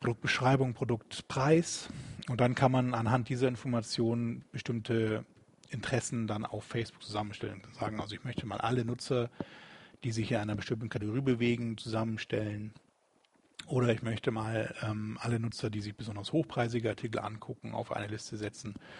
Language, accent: German, German